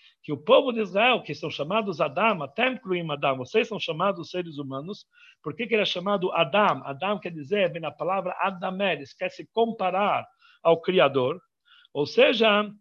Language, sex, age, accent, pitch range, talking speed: Portuguese, male, 60-79, Brazilian, 170-225 Hz, 170 wpm